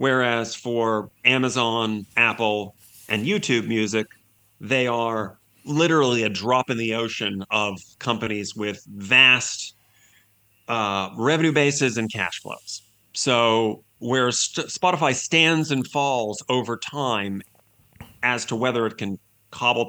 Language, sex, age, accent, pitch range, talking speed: English, male, 30-49, American, 105-130 Hz, 120 wpm